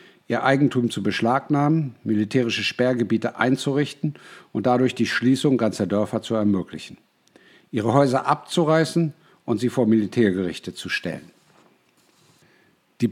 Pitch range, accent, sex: 110-140 Hz, German, male